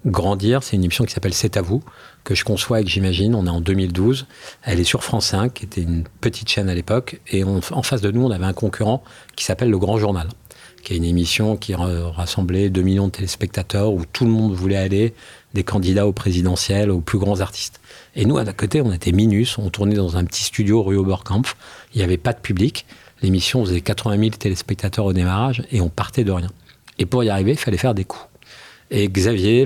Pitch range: 95-115 Hz